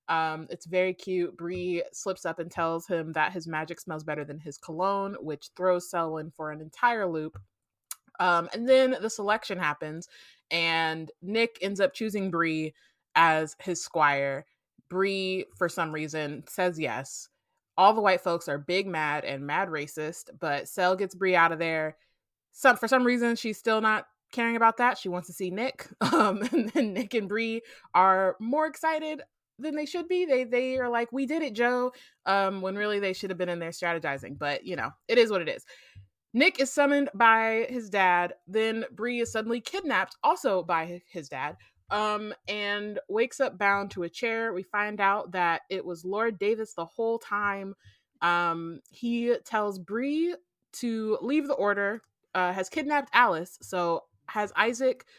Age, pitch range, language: 20-39, 165-230 Hz, English